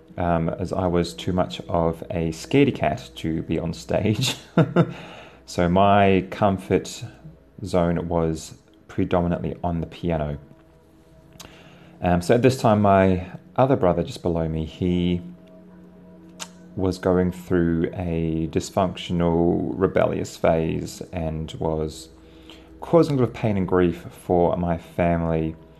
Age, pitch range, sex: 30-49, 80-100 Hz, male